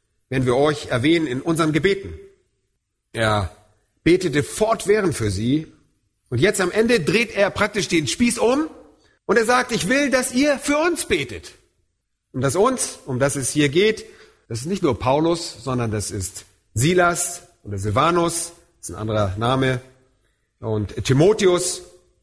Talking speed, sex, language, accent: 155 wpm, male, German, German